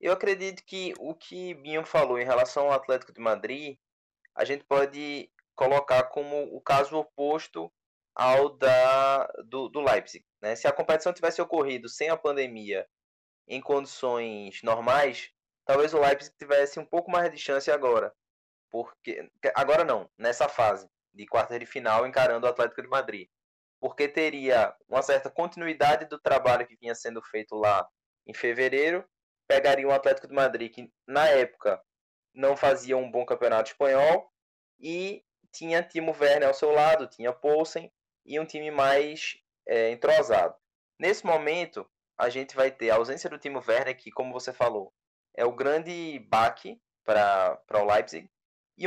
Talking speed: 155 wpm